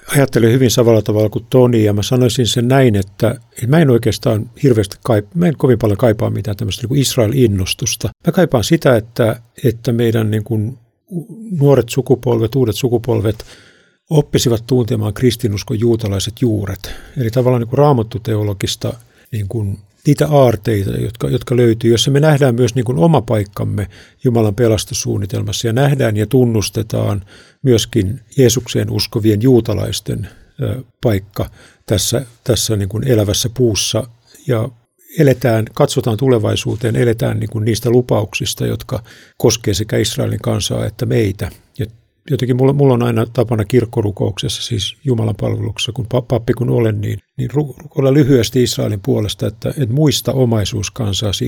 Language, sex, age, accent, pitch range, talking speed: Finnish, male, 50-69, native, 110-125 Hz, 150 wpm